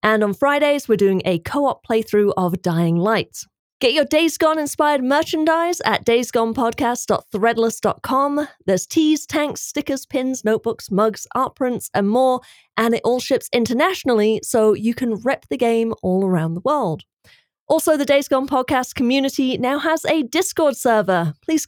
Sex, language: female, English